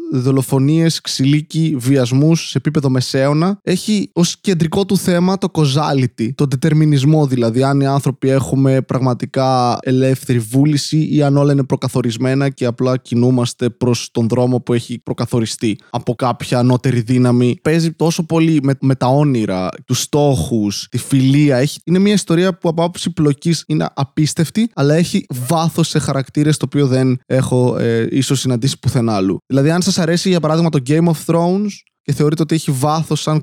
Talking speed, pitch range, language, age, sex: 160 wpm, 125-160 Hz, Greek, 20-39, male